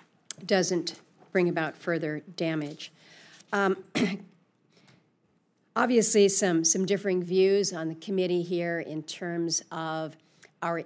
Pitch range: 155-175 Hz